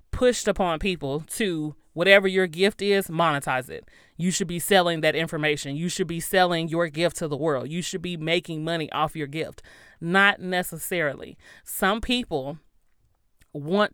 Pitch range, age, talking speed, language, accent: 160-190 Hz, 30-49, 165 wpm, English, American